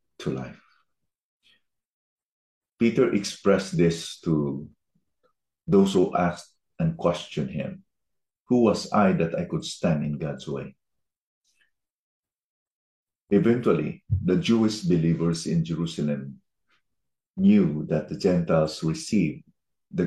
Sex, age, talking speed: male, 50-69, 100 wpm